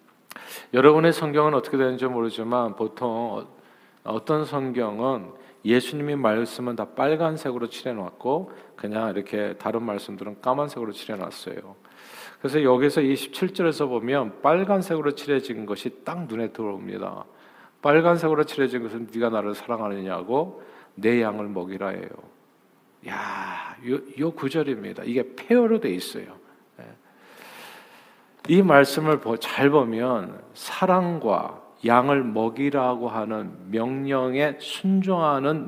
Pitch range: 115-150 Hz